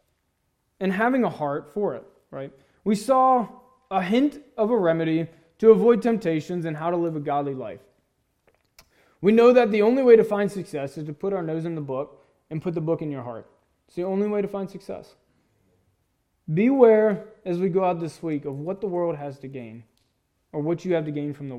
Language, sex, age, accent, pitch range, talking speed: English, male, 20-39, American, 155-200 Hz, 215 wpm